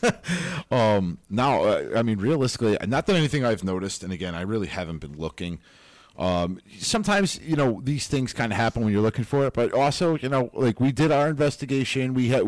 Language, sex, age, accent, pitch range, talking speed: English, male, 40-59, American, 95-125 Hz, 200 wpm